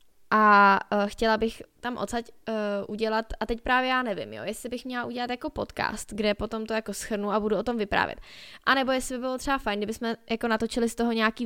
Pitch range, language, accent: 190-215 Hz, Czech, native